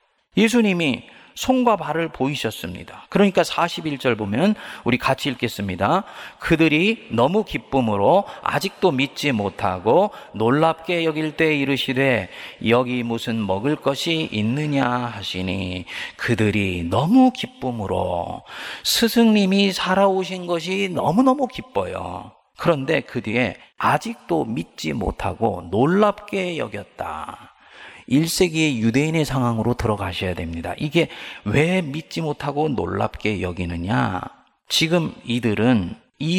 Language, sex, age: Korean, male, 40-59